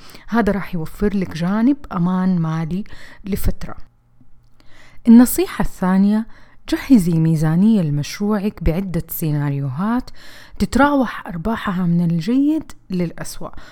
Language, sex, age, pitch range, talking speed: Arabic, female, 30-49, 170-225 Hz, 85 wpm